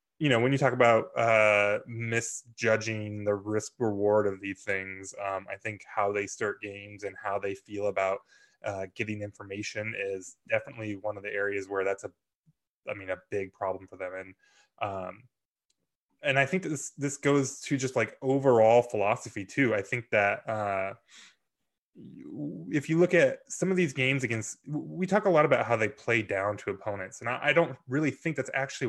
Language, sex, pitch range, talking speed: English, male, 105-145 Hz, 185 wpm